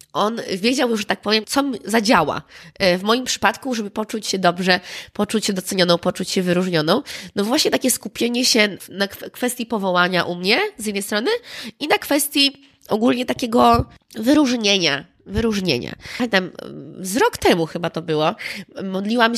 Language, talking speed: Polish, 150 wpm